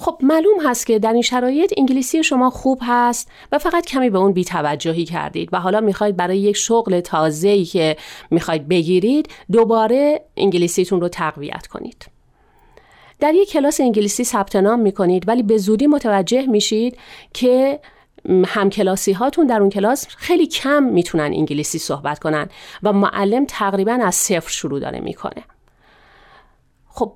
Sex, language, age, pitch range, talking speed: female, Persian, 40-59, 185-245 Hz, 145 wpm